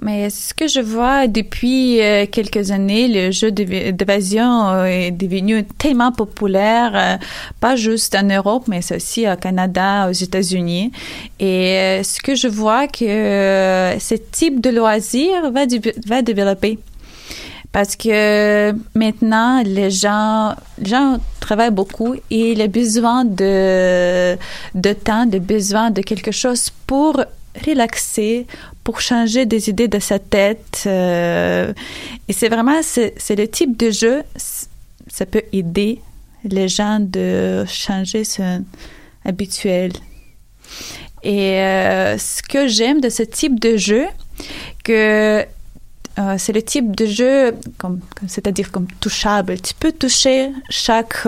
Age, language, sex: 30-49, French, female